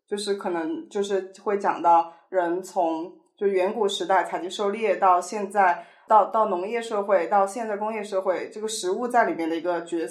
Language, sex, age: Chinese, female, 20-39